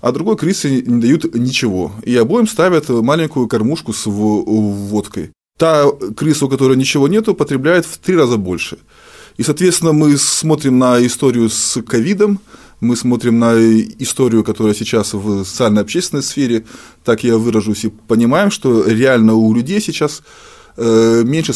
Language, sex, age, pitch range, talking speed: Russian, male, 20-39, 110-140 Hz, 145 wpm